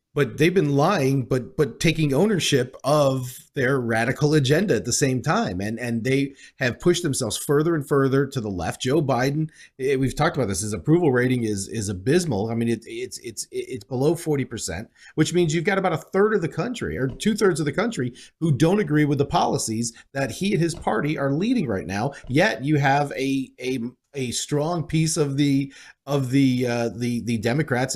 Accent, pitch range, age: American, 130-170 Hz, 30-49